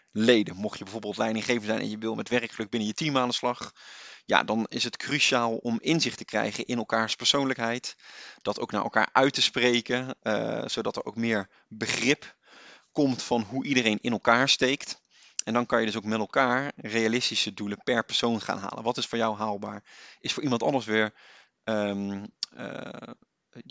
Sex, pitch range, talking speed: male, 105-125 Hz, 185 wpm